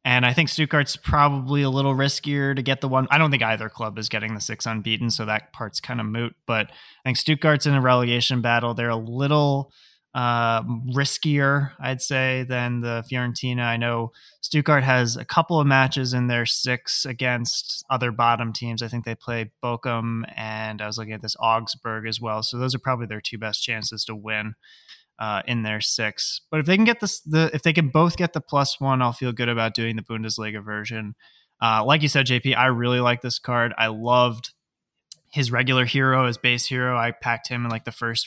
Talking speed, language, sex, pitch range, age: 215 wpm, English, male, 115-135 Hz, 20-39